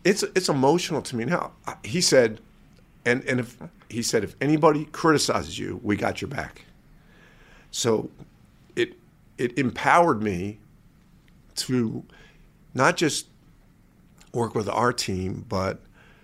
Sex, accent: male, American